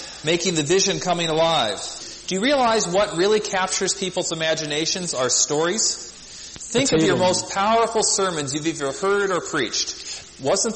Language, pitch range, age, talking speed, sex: English, 150-195 Hz, 40-59, 150 wpm, male